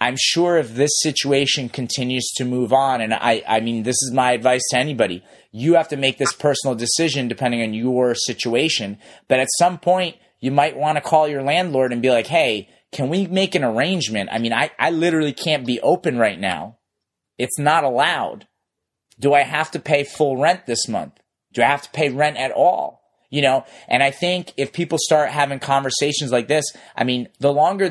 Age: 30-49